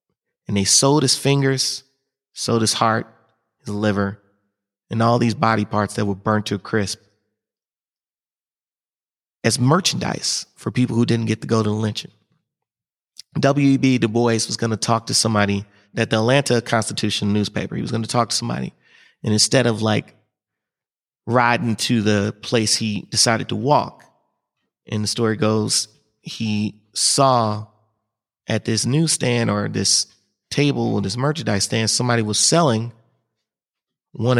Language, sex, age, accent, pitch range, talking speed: English, male, 30-49, American, 105-125 Hz, 150 wpm